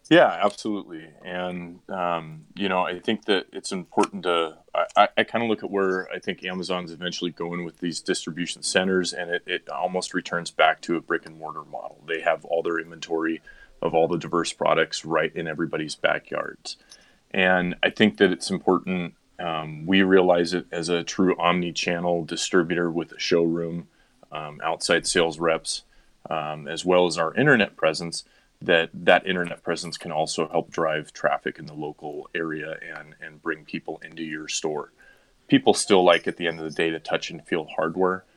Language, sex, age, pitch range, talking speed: English, male, 30-49, 80-90 Hz, 185 wpm